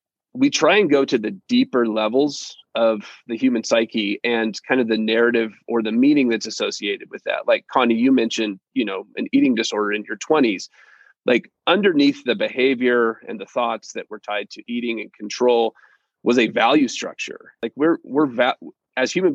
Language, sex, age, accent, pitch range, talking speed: English, male, 30-49, American, 110-140 Hz, 185 wpm